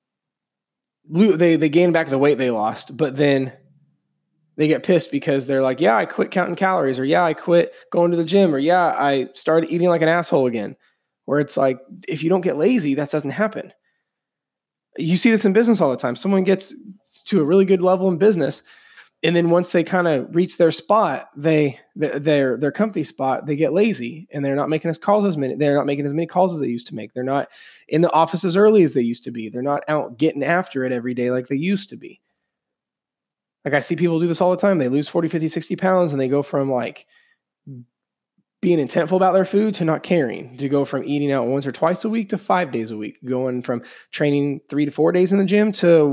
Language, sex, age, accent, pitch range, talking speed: English, male, 20-39, American, 140-180 Hz, 235 wpm